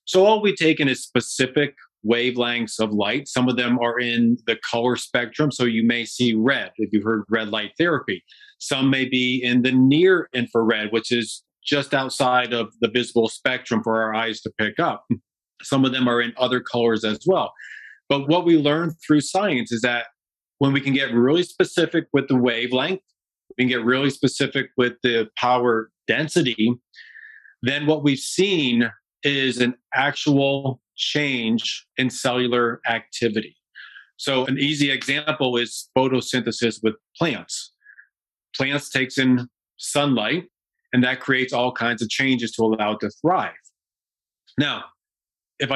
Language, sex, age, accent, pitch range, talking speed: English, male, 40-59, American, 120-145 Hz, 160 wpm